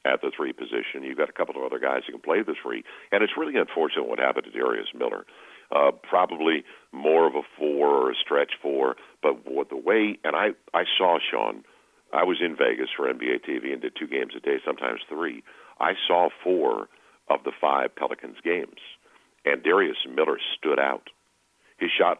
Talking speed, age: 200 wpm, 50-69